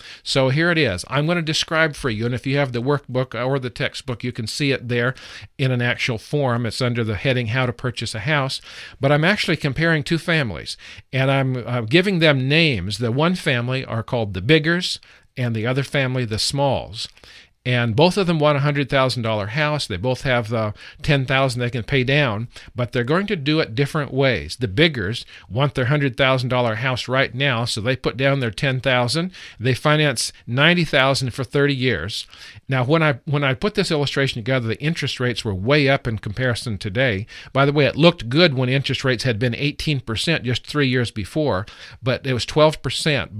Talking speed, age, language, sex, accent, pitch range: 200 wpm, 50-69, English, male, American, 120-145 Hz